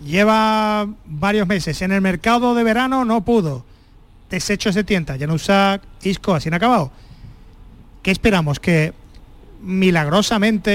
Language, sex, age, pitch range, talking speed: Spanish, male, 30-49, 175-230 Hz, 140 wpm